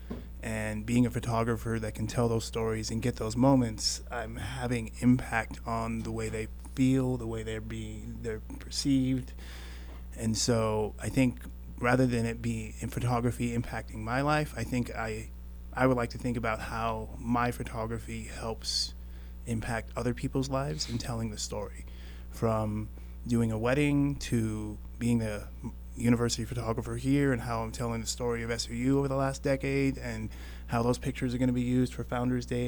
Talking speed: 175 wpm